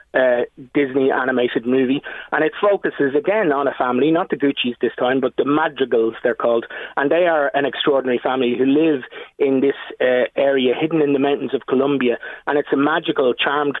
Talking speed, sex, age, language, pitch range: 190 wpm, male, 30-49, English, 125-150 Hz